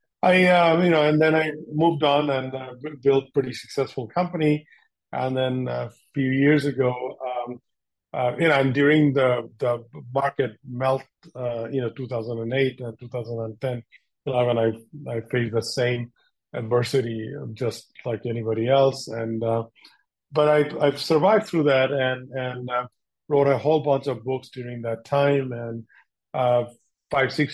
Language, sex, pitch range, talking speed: English, male, 120-140 Hz, 170 wpm